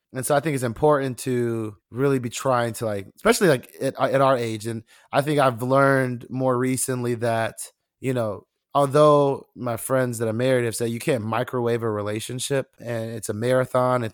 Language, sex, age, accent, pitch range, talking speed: English, male, 20-39, American, 115-130 Hz, 195 wpm